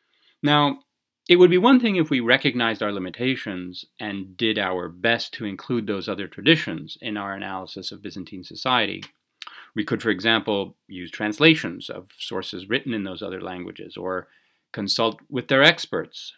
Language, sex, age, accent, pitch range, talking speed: English, male, 30-49, American, 105-135 Hz, 160 wpm